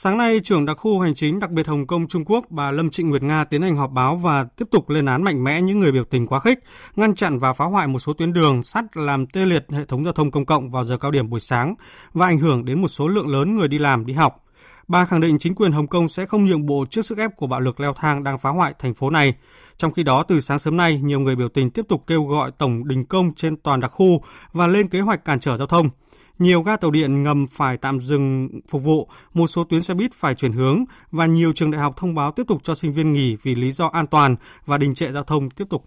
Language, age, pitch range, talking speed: Vietnamese, 20-39, 140-180 Hz, 285 wpm